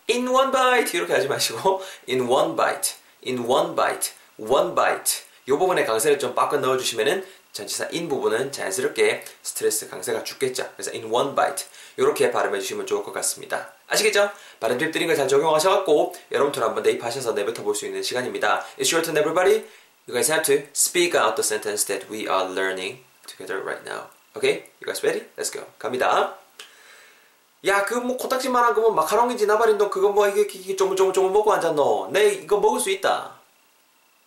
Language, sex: Korean, male